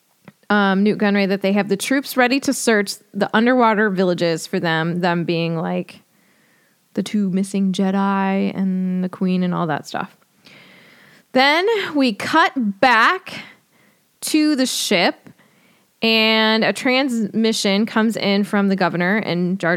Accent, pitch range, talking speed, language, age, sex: American, 190-225 Hz, 145 wpm, English, 20-39, female